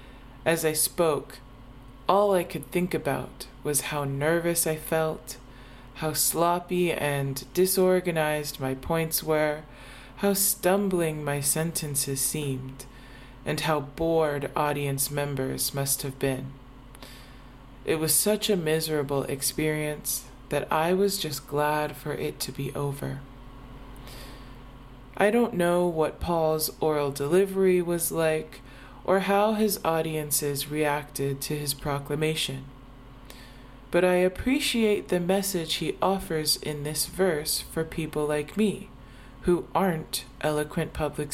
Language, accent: English, American